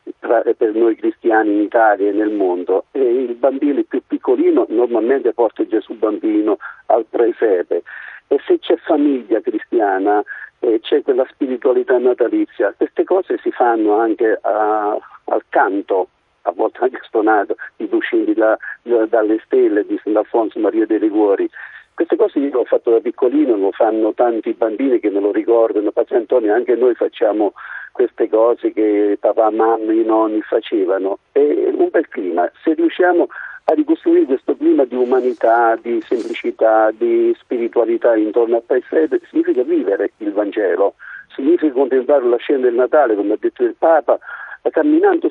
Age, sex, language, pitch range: 50-69, male, Italian, 295-395 Hz